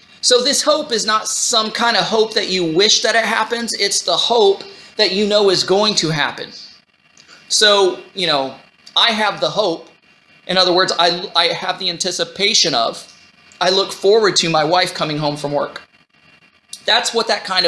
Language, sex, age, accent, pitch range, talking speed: English, male, 30-49, American, 170-235 Hz, 185 wpm